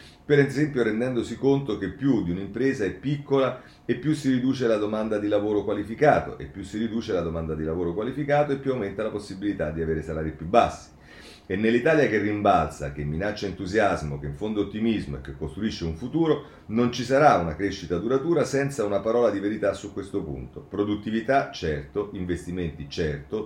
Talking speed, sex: 185 wpm, male